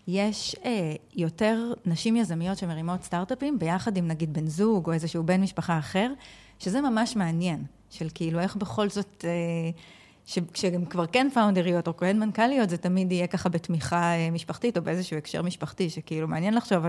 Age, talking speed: 20-39, 165 wpm